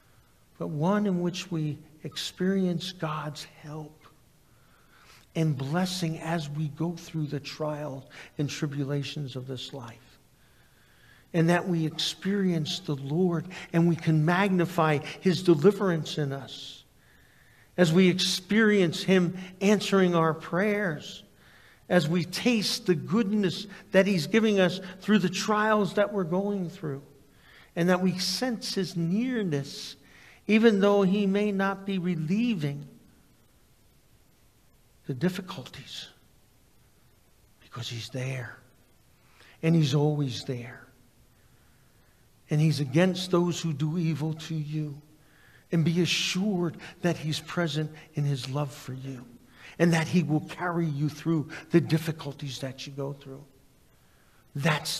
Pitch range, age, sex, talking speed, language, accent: 145-185 Hz, 50-69, male, 125 wpm, English, American